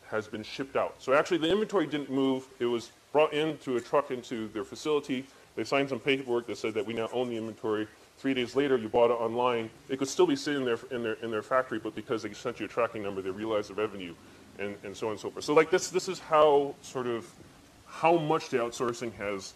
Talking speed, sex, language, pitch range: 250 wpm, female, English, 105-130 Hz